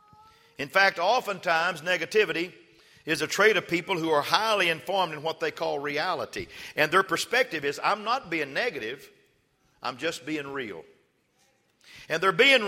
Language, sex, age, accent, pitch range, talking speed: English, male, 50-69, American, 160-215 Hz, 155 wpm